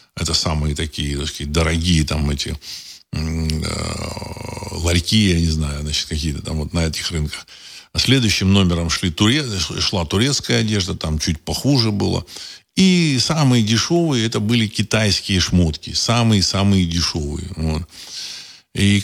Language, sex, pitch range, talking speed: Russian, male, 85-110 Hz, 130 wpm